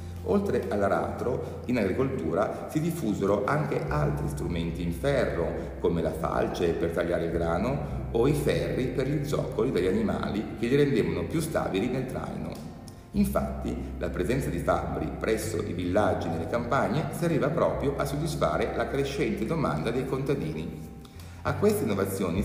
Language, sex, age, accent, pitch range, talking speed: Italian, male, 50-69, native, 80-110 Hz, 145 wpm